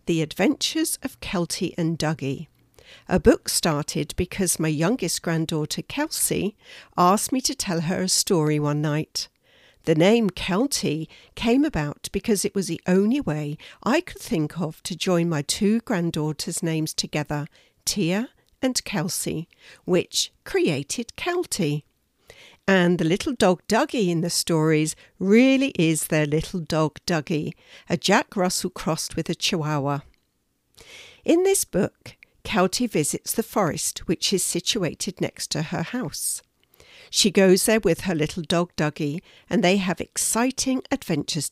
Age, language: 60-79, English